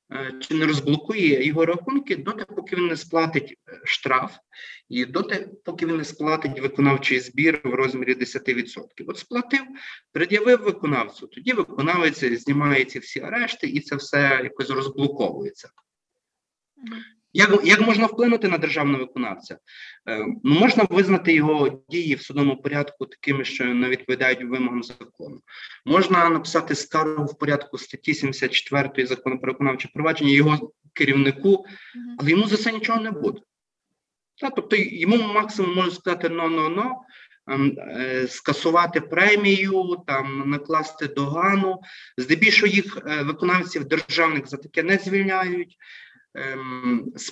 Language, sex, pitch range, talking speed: Ukrainian, male, 140-195 Hz, 125 wpm